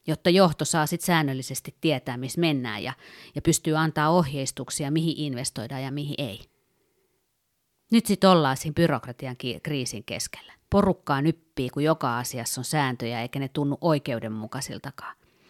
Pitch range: 130-170 Hz